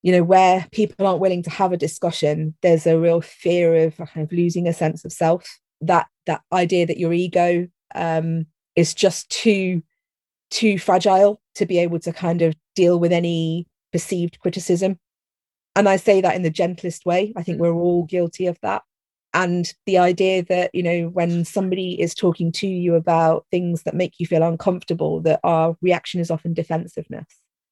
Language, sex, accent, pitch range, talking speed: English, female, British, 165-180 Hz, 185 wpm